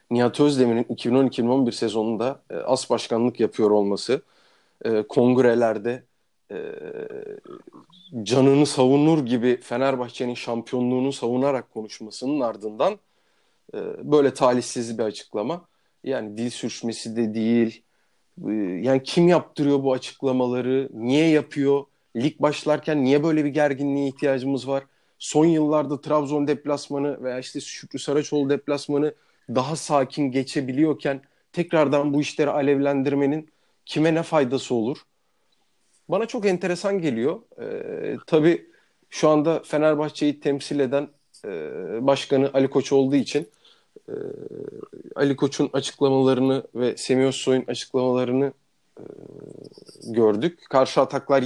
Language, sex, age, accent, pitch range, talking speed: Turkish, male, 40-59, native, 130-150 Hz, 110 wpm